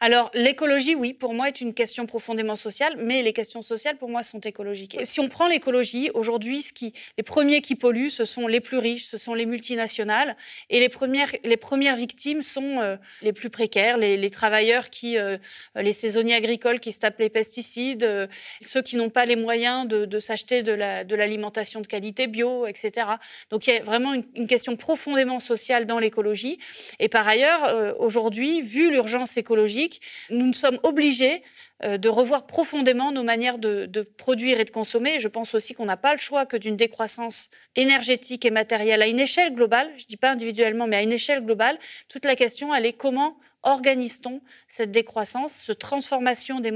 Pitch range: 220-260 Hz